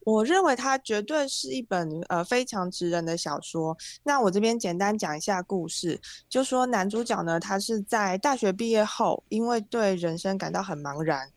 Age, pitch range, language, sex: 20-39, 170-215 Hz, Chinese, female